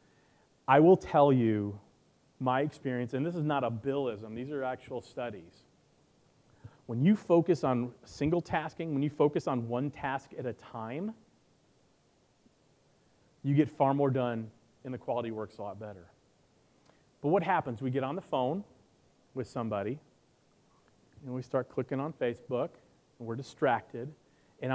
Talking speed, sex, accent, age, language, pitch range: 155 wpm, male, American, 40-59, English, 120-160 Hz